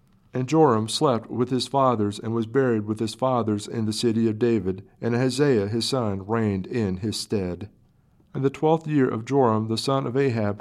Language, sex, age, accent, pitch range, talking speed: English, male, 50-69, American, 110-130 Hz, 200 wpm